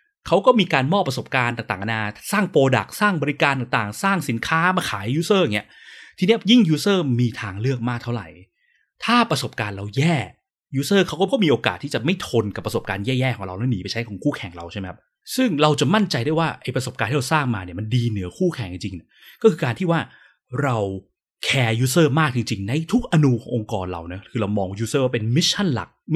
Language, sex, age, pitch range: Thai, male, 20-39, 115-165 Hz